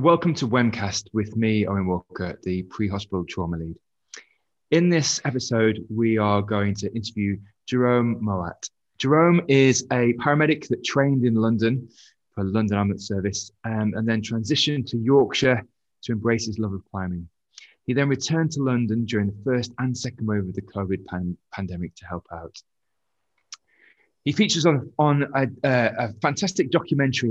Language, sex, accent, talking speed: English, male, British, 165 wpm